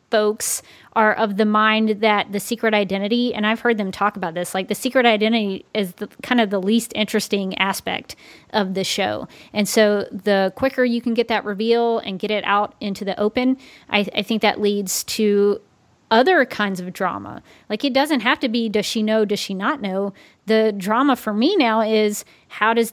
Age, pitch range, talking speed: 30-49, 205-235 Hz, 205 wpm